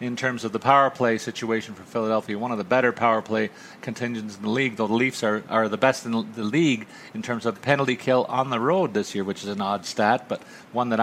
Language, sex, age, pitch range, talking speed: English, male, 40-59, 105-130 Hz, 255 wpm